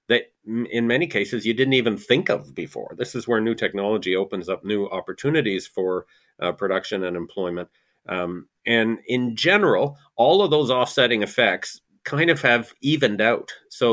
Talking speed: 170 wpm